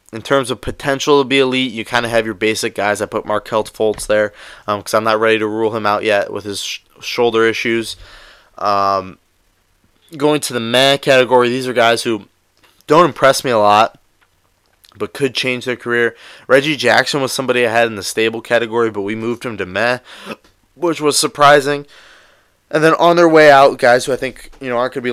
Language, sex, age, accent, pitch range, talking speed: English, male, 20-39, American, 100-125 Hz, 205 wpm